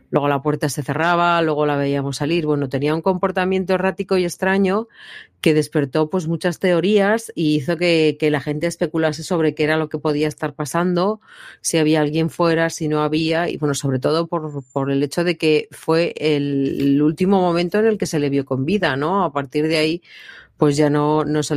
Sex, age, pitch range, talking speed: female, 40-59, 150-175 Hz, 210 wpm